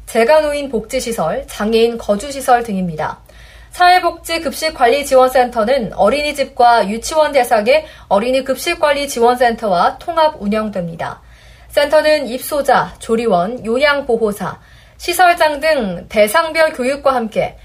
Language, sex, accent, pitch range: Korean, female, native, 220-310 Hz